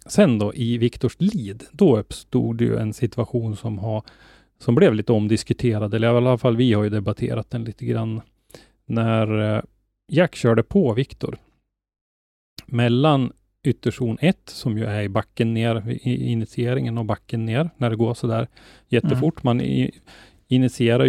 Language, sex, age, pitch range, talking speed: Swedish, male, 30-49, 105-125 Hz, 155 wpm